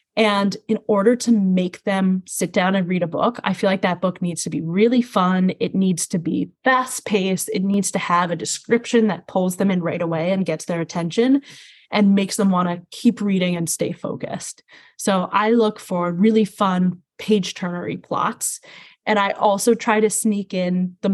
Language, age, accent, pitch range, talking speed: English, 20-39, American, 185-225 Hz, 200 wpm